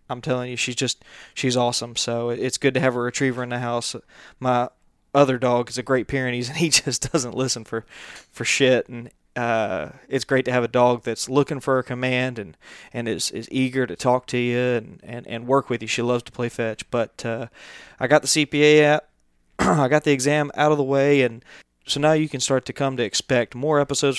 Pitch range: 120-135 Hz